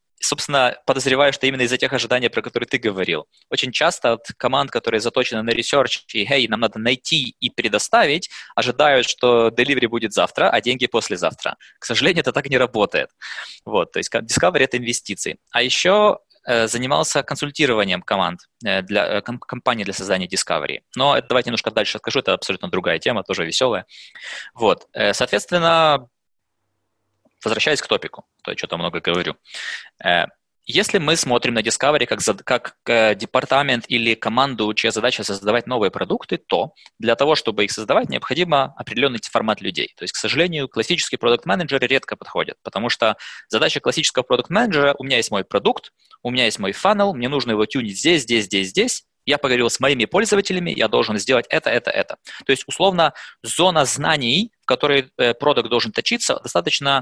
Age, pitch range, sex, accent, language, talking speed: 20-39, 115-145 Hz, male, native, Russian, 170 wpm